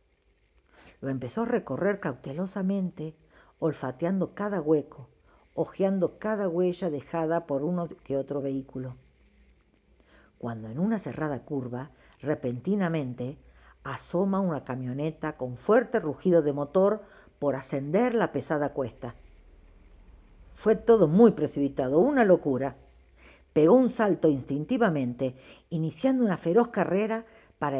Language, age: Spanish, 50-69